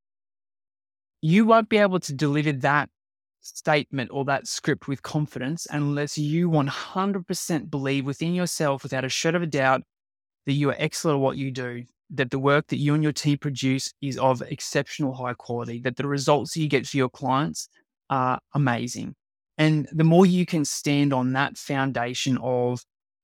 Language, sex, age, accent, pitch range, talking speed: English, male, 20-39, Australian, 130-160 Hz, 175 wpm